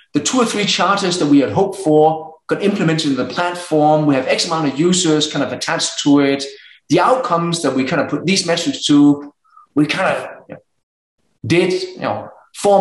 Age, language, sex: 30-49, English, male